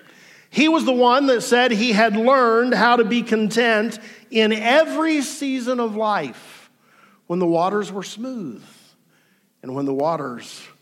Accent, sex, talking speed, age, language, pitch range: American, male, 150 wpm, 50-69, English, 150-210 Hz